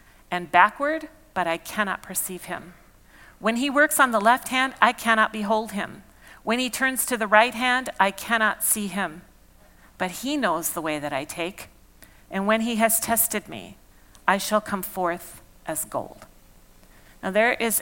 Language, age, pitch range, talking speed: English, 40-59, 175-220 Hz, 175 wpm